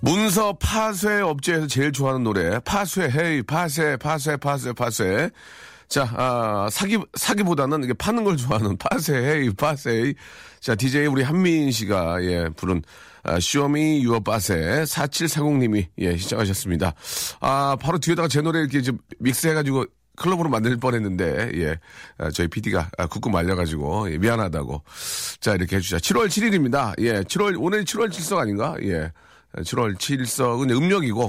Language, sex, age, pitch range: Korean, male, 40-59, 100-150 Hz